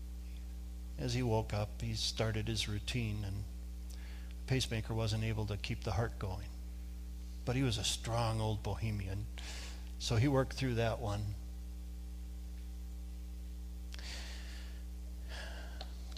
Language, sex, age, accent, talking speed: English, male, 50-69, American, 120 wpm